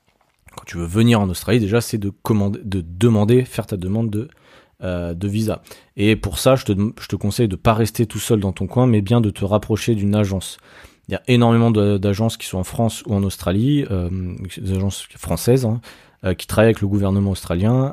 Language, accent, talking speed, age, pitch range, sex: French, French, 225 wpm, 30-49, 95-115 Hz, male